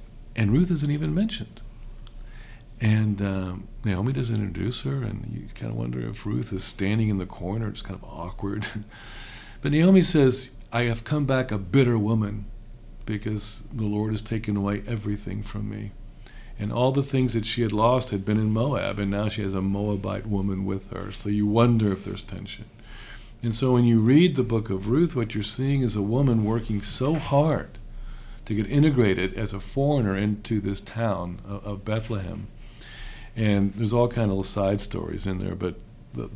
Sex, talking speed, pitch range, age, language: male, 190 wpm, 100-120 Hz, 50-69, English